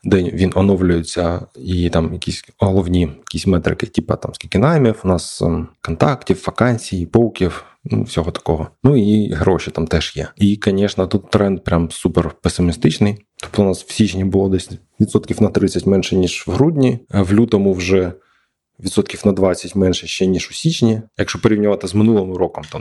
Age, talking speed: 20-39, 170 wpm